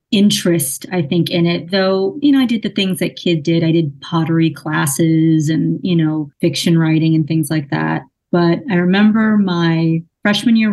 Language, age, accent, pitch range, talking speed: English, 30-49, American, 165-205 Hz, 190 wpm